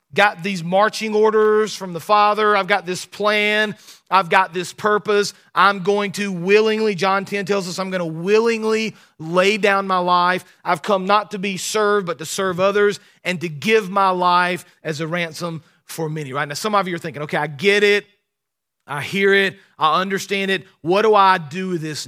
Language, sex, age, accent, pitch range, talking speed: English, male, 40-59, American, 155-200 Hz, 200 wpm